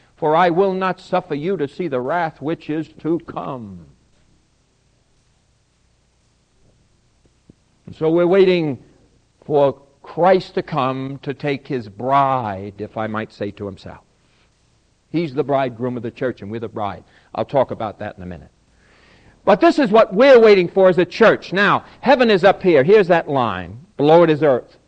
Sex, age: male, 60-79